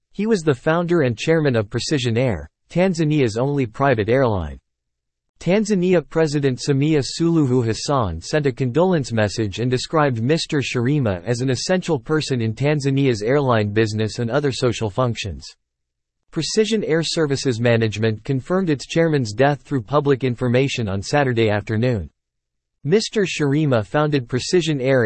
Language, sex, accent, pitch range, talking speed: English, male, American, 115-150 Hz, 135 wpm